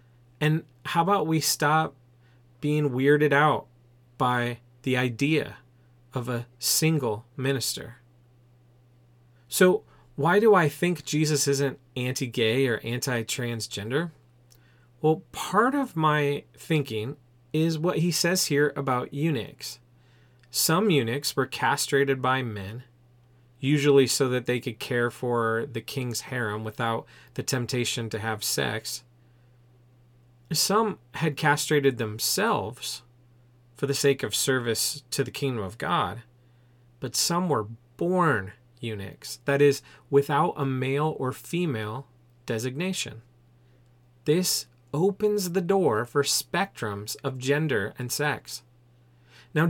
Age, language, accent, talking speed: 30-49, English, American, 115 wpm